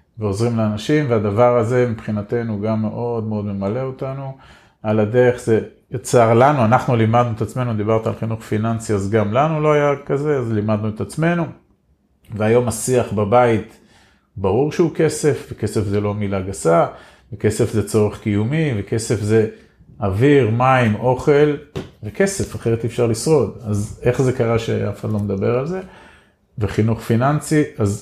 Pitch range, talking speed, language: 105-125 Hz, 150 wpm, Hebrew